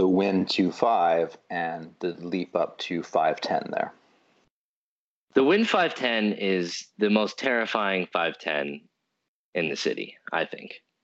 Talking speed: 145 wpm